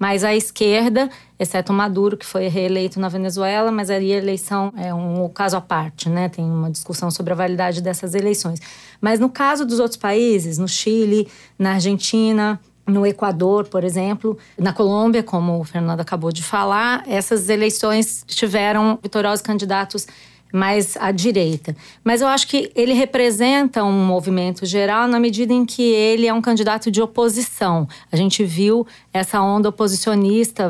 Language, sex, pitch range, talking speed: Portuguese, female, 180-225 Hz, 160 wpm